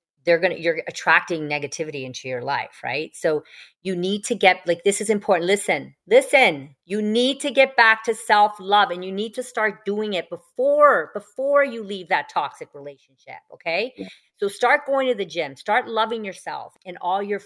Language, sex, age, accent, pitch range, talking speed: English, female, 40-59, American, 165-210 Hz, 195 wpm